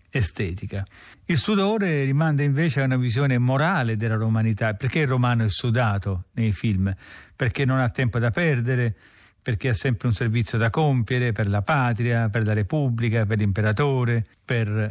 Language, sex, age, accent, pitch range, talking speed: Italian, male, 50-69, native, 110-135 Hz, 160 wpm